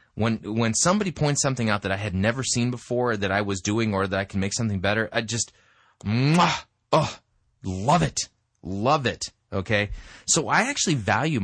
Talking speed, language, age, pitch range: 190 wpm, English, 30-49, 105-150 Hz